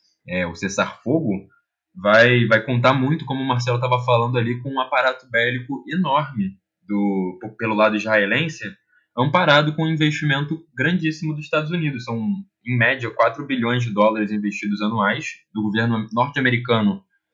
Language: Portuguese